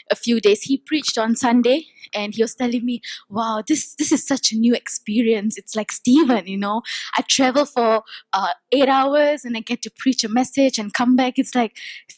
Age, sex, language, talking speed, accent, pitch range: 20-39, female, English, 215 wpm, Indian, 220-280 Hz